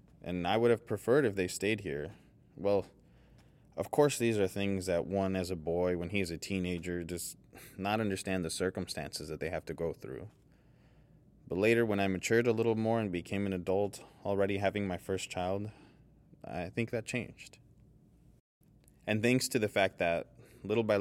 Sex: male